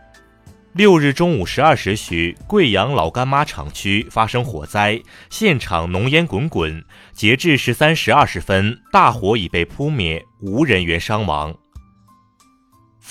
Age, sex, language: 30-49, male, Chinese